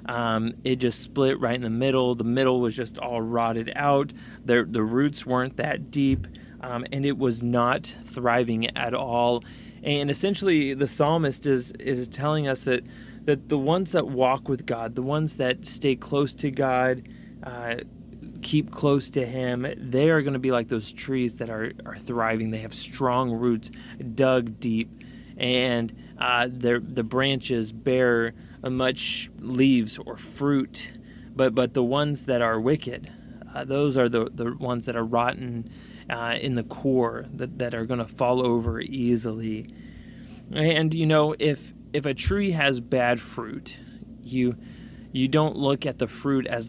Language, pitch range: English, 120-135 Hz